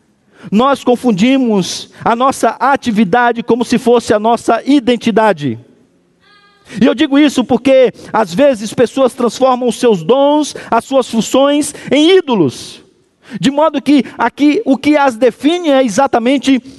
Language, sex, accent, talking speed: Portuguese, male, Brazilian, 135 wpm